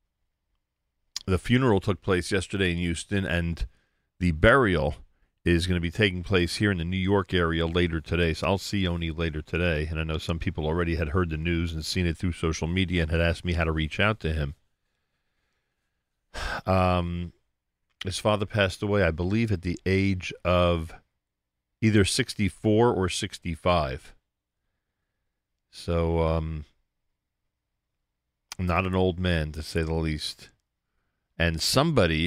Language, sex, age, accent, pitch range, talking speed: English, male, 40-59, American, 80-100 Hz, 155 wpm